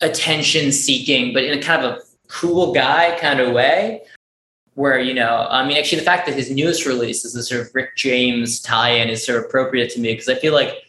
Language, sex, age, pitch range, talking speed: English, male, 20-39, 120-145 Hz, 225 wpm